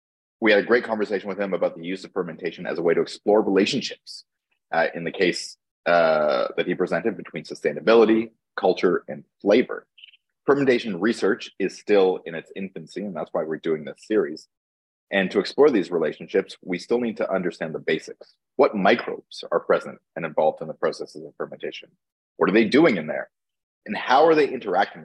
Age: 30-49